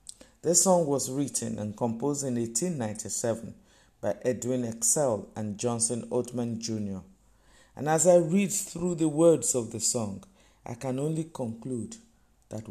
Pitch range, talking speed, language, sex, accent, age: 110-150 Hz, 140 wpm, English, male, Nigerian, 50-69